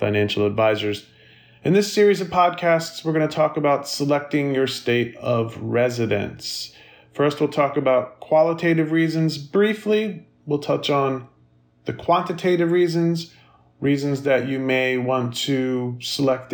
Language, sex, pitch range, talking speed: English, male, 120-160 Hz, 135 wpm